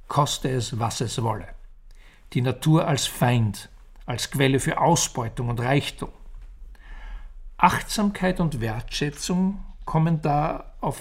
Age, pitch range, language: 50-69, 115-155 Hz, German